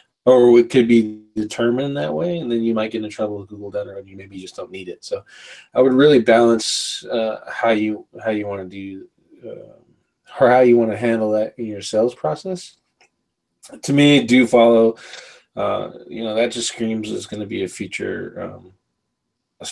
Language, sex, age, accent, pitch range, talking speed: English, male, 20-39, American, 105-125 Hz, 200 wpm